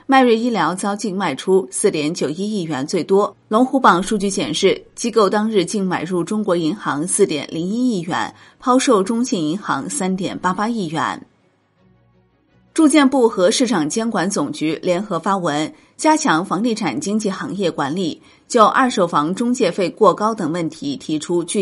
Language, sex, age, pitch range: Chinese, female, 30-49, 165-230 Hz